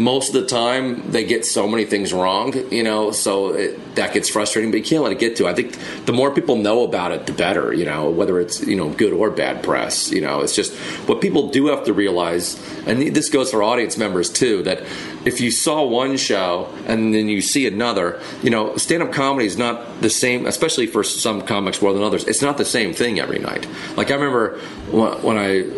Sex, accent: male, American